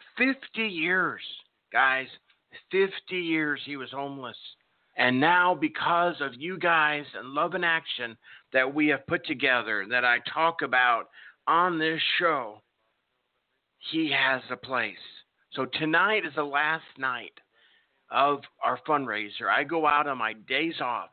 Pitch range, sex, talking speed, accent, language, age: 125-160 Hz, male, 140 wpm, American, English, 50-69